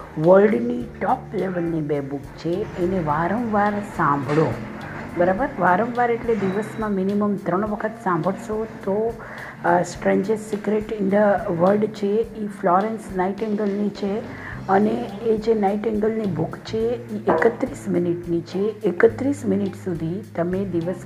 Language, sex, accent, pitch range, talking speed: Hindi, female, native, 170-210 Hz, 105 wpm